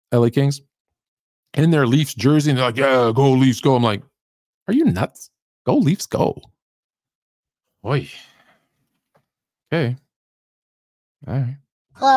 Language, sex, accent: English, male, American